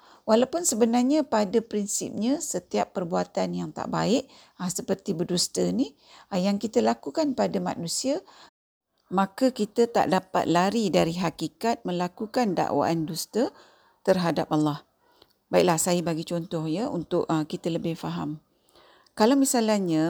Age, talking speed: 50-69, 120 wpm